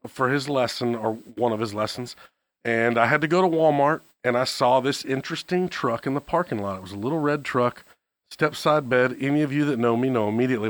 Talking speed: 235 wpm